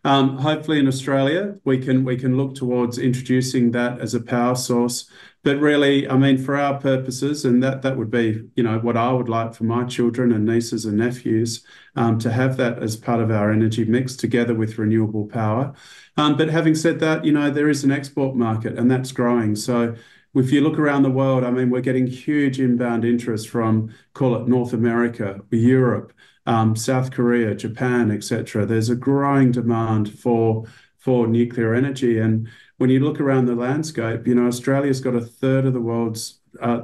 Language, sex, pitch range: English, male, 115-130 Hz